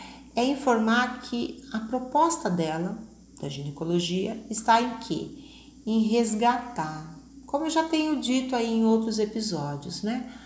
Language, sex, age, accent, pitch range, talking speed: Portuguese, female, 40-59, Brazilian, 180-255 Hz, 130 wpm